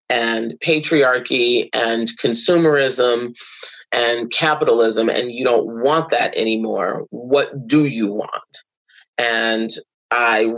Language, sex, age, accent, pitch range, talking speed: English, male, 30-49, American, 115-170 Hz, 100 wpm